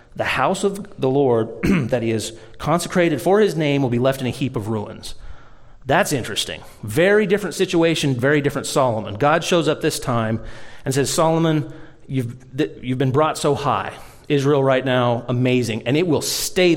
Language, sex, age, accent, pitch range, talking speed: English, male, 30-49, American, 115-150 Hz, 180 wpm